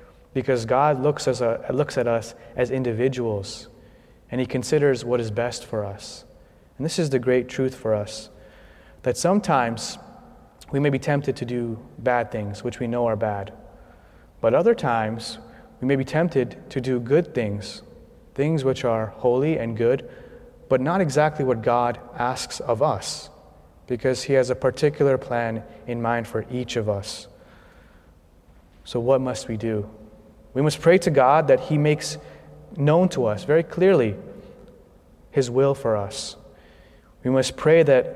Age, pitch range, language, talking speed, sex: 30-49, 110-135 Hz, English, 160 wpm, male